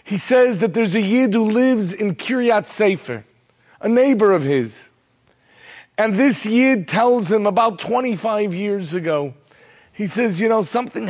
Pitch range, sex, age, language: 150-220 Hz, male, 40-59, English